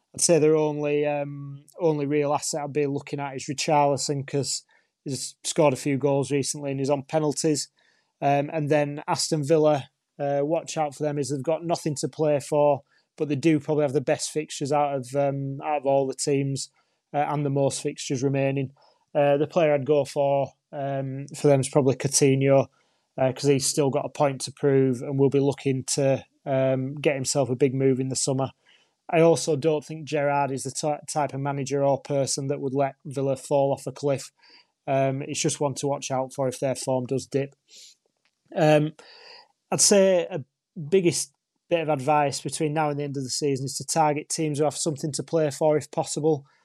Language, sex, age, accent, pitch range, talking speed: English, male, 20-39, British, 140-155 Hz, 205 wpm